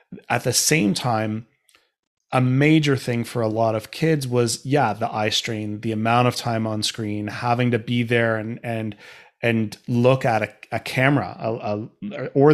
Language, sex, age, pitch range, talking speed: English, male, 30-49, 110-130 Hz, 180 wpm